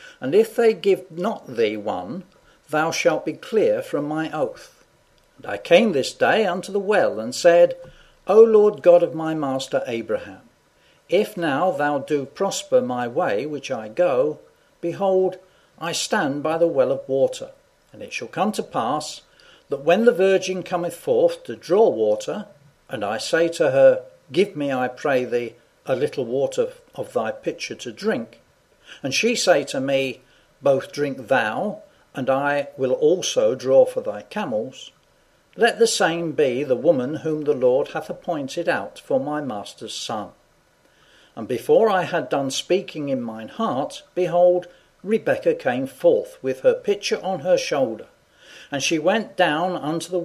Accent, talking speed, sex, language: British, 165 wpm, male, English